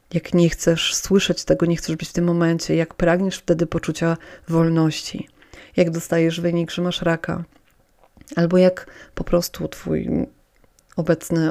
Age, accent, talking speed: 30-49, native, 145 wpm